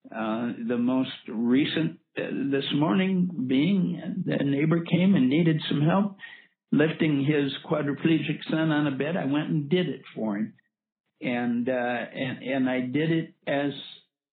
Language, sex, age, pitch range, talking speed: English, male, 60-79, 120-175 Hz, 155 wpm